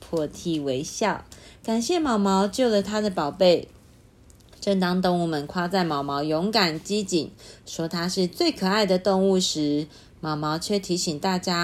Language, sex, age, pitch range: Chinese, female, 30-49, 160-210 Hz